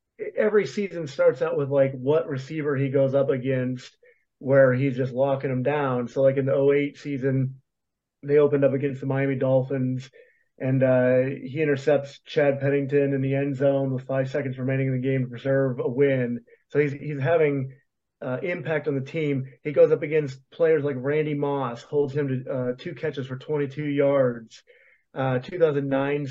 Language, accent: English, American